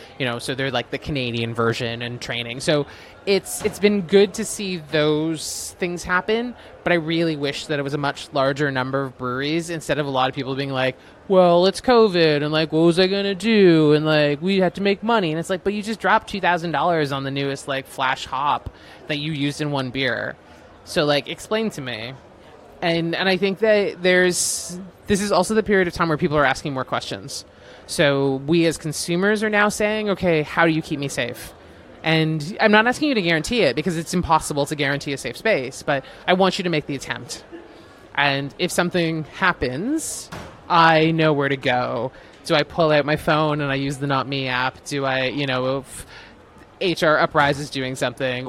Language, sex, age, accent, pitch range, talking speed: English, male, 20-39, American, 140-185 Hz, 215 wpm